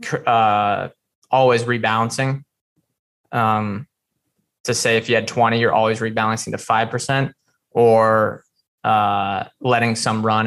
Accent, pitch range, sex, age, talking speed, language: American, 110-130 Hz, male, 20-39, 115 wpm, English